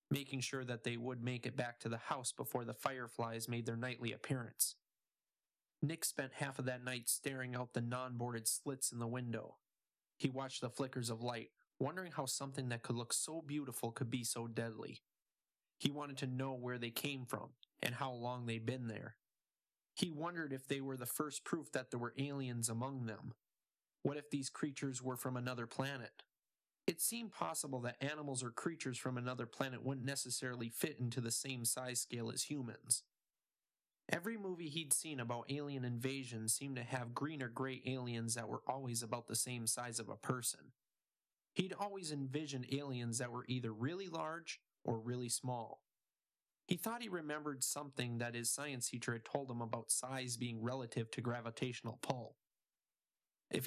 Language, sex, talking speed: English, male, 180 wpm